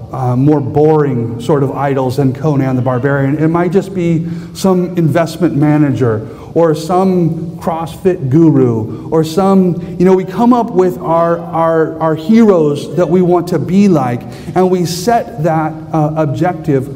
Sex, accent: male, American